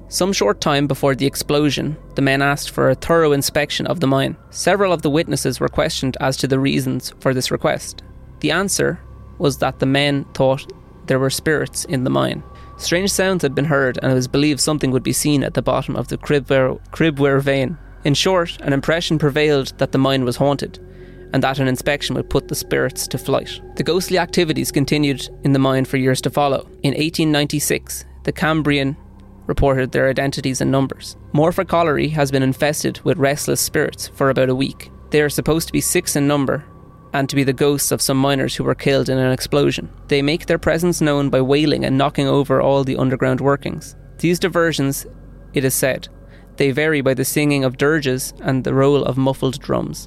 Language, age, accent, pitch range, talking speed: English, 20-39, Irish, 130-150 Hz, 200 wpm